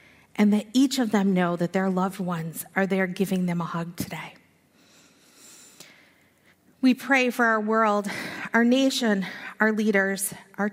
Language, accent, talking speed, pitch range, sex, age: English, American, 150 wpm, 190-220 Hz, female, 40-59